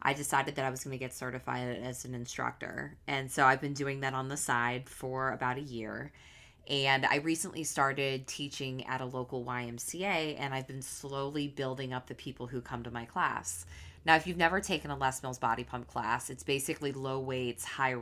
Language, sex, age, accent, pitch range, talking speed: English, female, 20-39, American, 125-145 Hz, 210 wpm